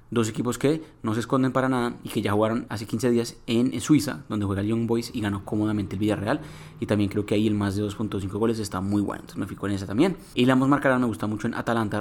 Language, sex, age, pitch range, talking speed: Spanish, male, 20-39, 105-120 Hz, 275 wpm